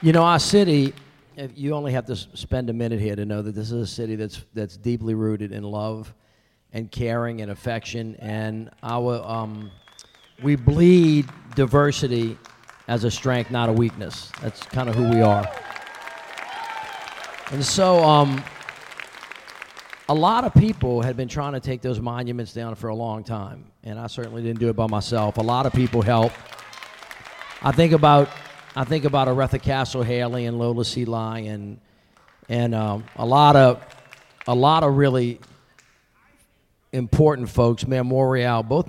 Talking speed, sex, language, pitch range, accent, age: 160 wpm, male, English, 110-135 Hz, American, 40-59